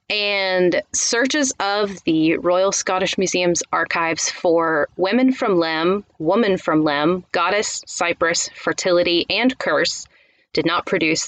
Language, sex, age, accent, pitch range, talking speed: English, female, 30-49, American, 170-245 Hz, 120 wpm